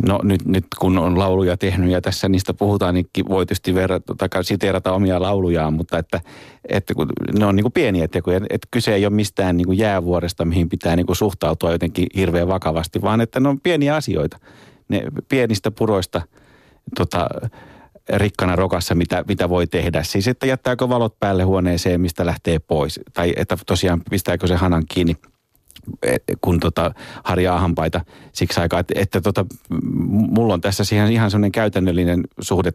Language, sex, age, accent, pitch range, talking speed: Finnish, male, 30-49, native, 85-105 Hz, 165 wpm